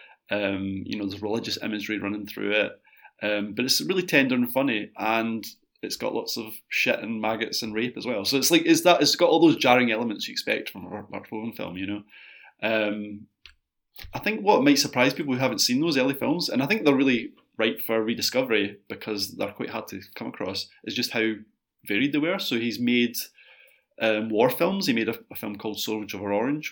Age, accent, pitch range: 20-39, British, 105-135 Hz